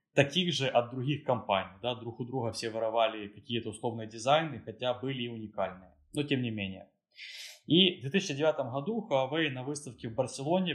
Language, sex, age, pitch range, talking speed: Ukrainian, male, 20-39, 115-145 Hz, 175 wpm